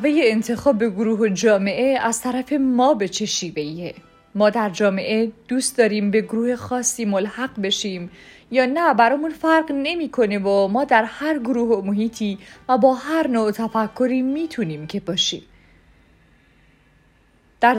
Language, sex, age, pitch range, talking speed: Persian, female, 30-49, 200-240 Hz, 130 wpm